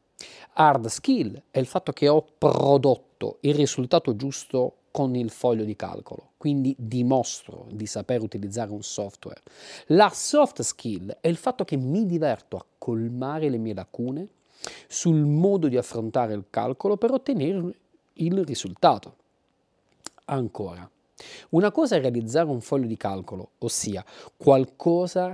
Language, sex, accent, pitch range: Italian, male, native, 115-165 Hz